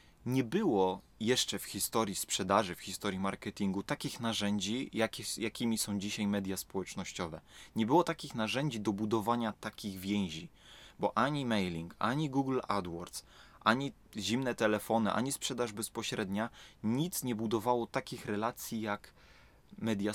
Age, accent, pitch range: 20-39, native, 100-120 Hz